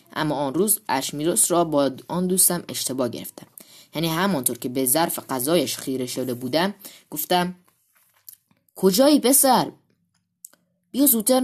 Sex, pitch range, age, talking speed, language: female, 145-215 Hz, 20-39, 125 wpm, Persian